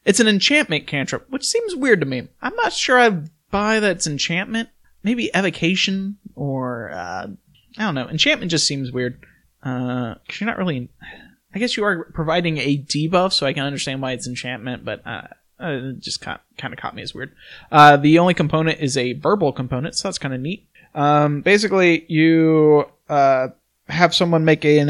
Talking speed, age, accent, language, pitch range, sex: 195 wpm, 20-39, American, English, 135-170 Hz, male